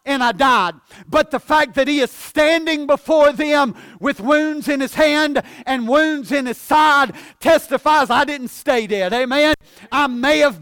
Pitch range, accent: 240-290 Hz, American